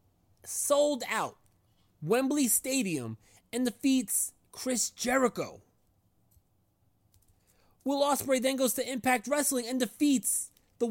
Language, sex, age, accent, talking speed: English, male, 30-49, American, 100 wpm